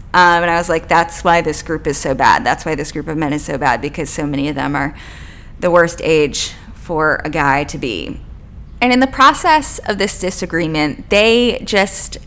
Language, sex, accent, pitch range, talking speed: English, female, American, 155-200 Hz, 215 wpm